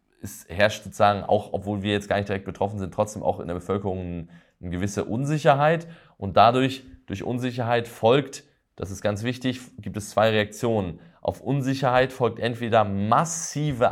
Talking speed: 165 wpm